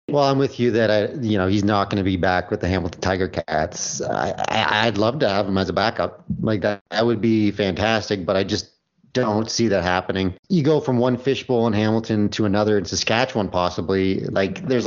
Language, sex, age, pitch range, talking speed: English, male, 30-49, 95-120 Hz, 225 wpm